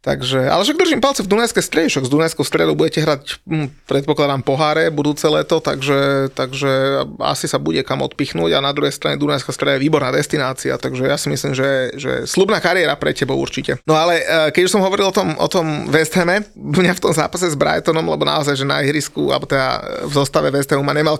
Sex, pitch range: male, 140-160 Hz